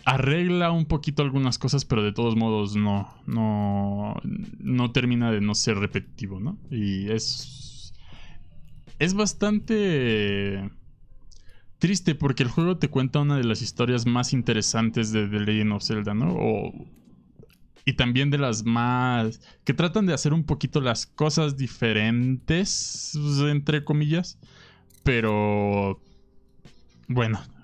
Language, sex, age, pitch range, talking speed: Spanish, male, 20-39, 105-135 Hz, 130 wpm